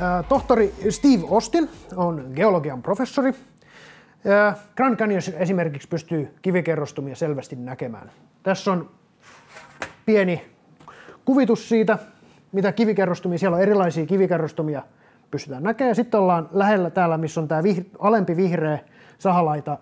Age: 30-49